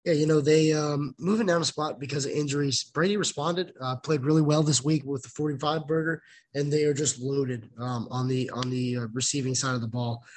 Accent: American